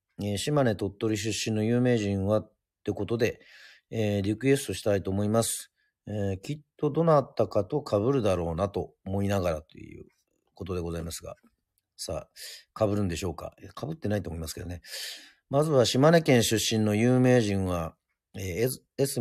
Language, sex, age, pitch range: Japanese, male, 40-59, 95-130 Hz